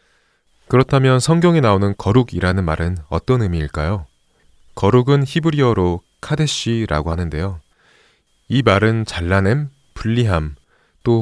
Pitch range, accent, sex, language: 90-130 Hz, native, male, Korean